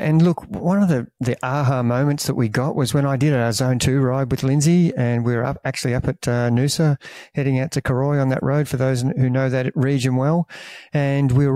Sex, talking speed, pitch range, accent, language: male, 245 wpm, 130-155 Hz, Australian, English